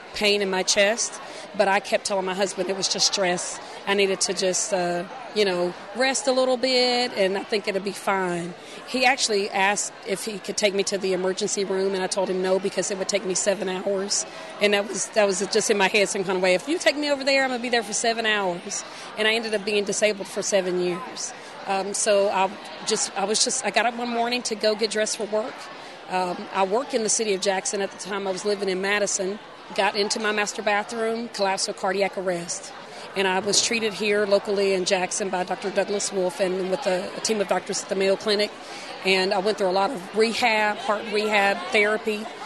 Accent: American